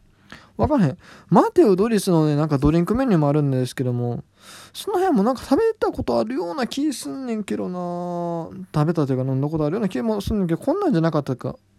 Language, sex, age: Japanese, male, 20-39